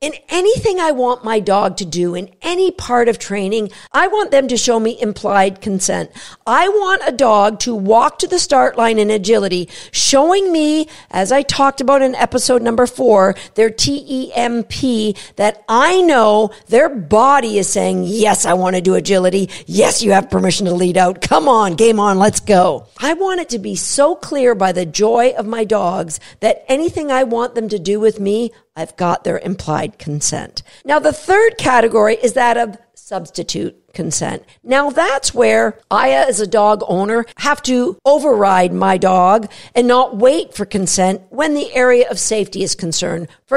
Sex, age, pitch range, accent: female, 50-69, 195-260 Hz, American